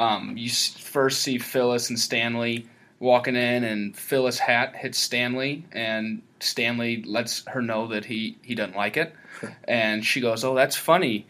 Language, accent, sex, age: English, American, male, 20-39